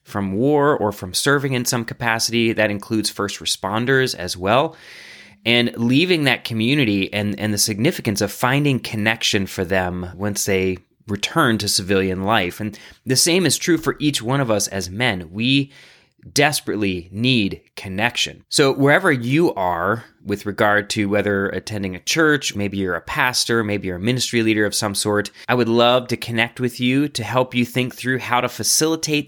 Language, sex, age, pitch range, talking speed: English, male, 30-49, 100-125 Hz, 180 wpm